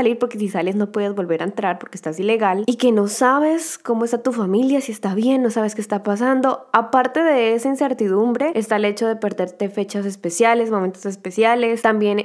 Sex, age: female, 10-29